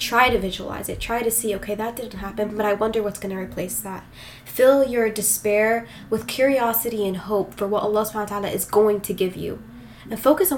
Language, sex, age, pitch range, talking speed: English, female, 10-29, 200-235 Hz, 225 wpm